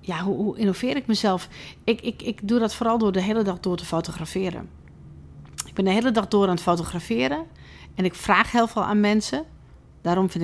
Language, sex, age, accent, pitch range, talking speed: Dutch, female, 40-59, Dutch, 170-205 Hz, 215 wpm